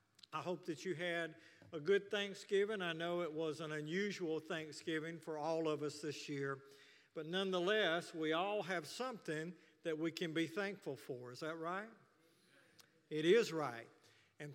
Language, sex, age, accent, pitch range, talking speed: English, male, 50-69, American, 155-190 Hz, 165 wpm